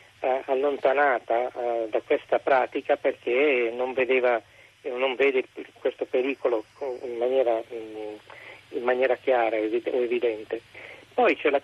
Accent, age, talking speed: native, 40-59, 110 wpm